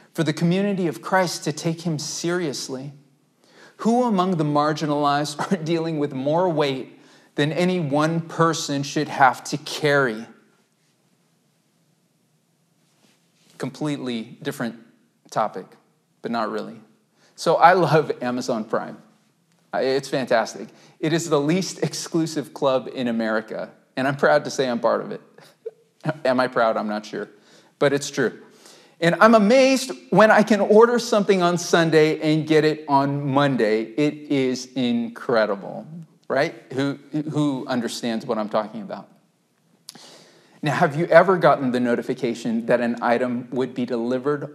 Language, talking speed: English, 140 wpm